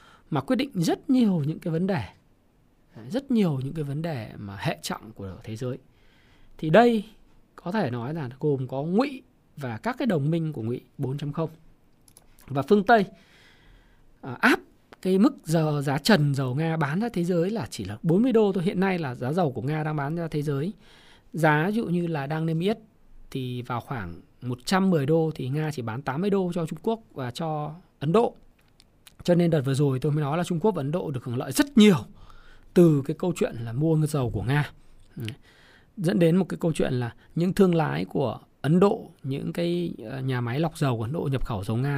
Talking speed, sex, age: 215 wpm, male, 20-39